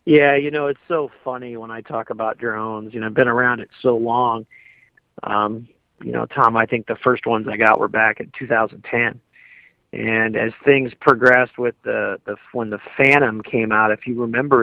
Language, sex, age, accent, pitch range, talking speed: English, male, 40-59, American, 115-140 Hz, 200 wpm